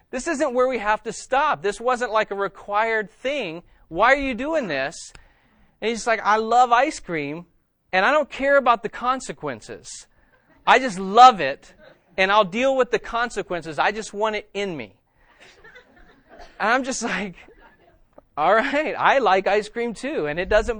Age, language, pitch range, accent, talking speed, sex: 30-49, English, 135-220 Hz, American, 180 wpm, male